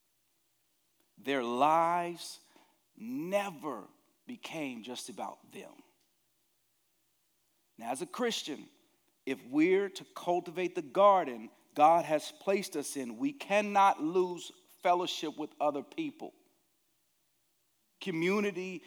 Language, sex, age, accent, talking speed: English, male, 40-59, American, 95 wpm